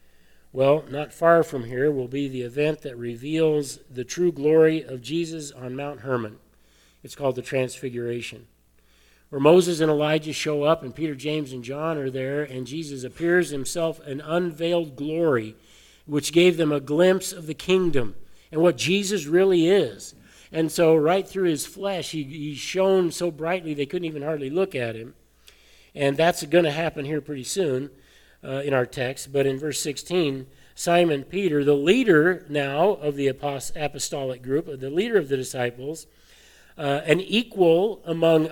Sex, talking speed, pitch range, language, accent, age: male, 170 wpm, 130-170 Hz, English, American, 50-69